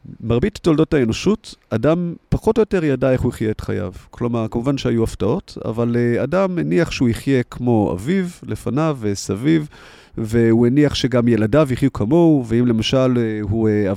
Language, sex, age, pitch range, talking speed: Hebrew, male, 30-49, 110-140 Hz, 150 wpm